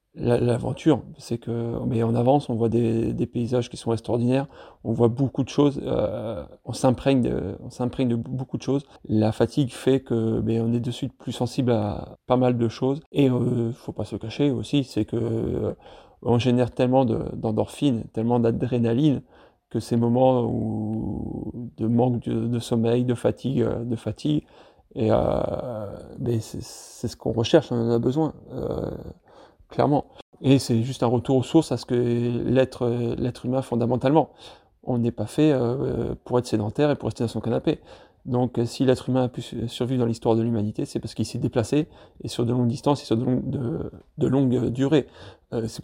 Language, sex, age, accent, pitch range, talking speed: French, male, 30-49, French, 115-130 Hz, 185 wpm